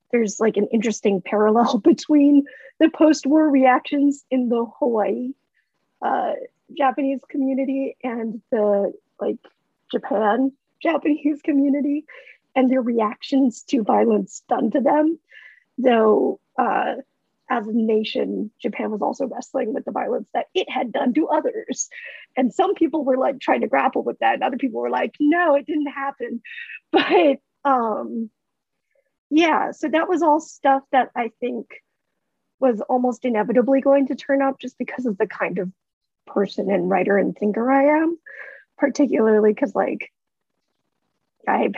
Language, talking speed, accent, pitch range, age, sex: English, 145 wpm, American, 225-295 Hz, 40-59, female